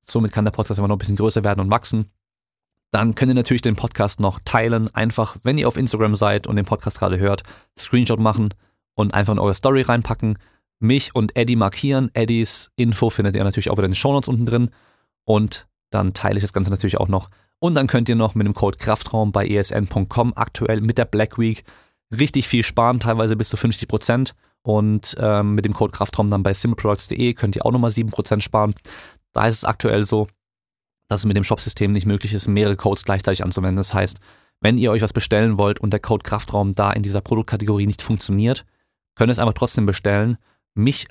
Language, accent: German, German